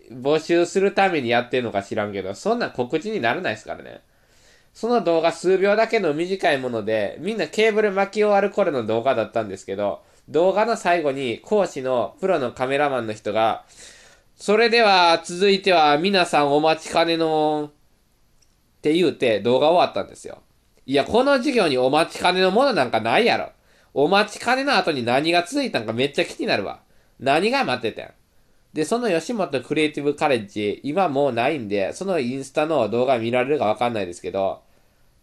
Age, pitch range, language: 20-39, 125-195 Hz, Japanese